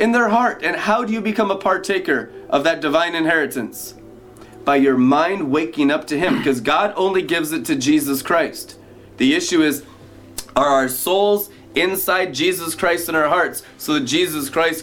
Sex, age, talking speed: male, 30-49, 180 wpm